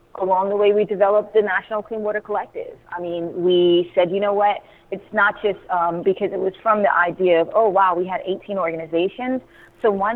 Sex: female